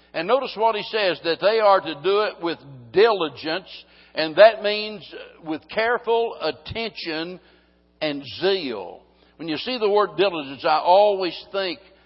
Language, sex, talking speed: English, male, 150 wpm